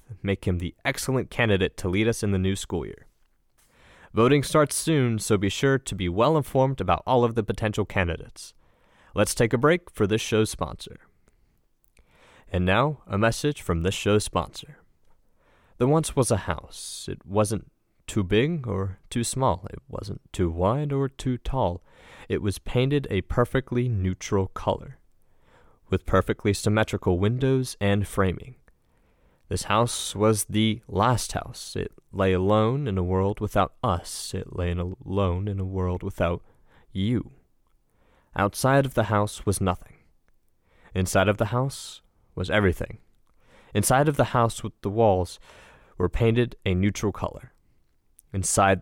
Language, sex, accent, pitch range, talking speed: English, male, American, 95-120 Hz, 150 wpm